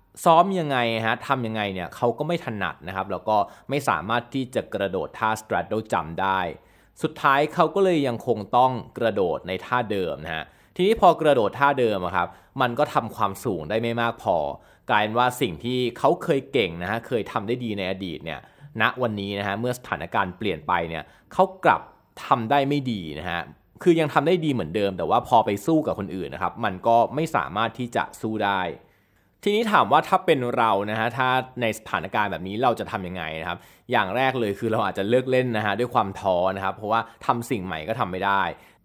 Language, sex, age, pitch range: Thai, male, 20-39, 100-135 Hz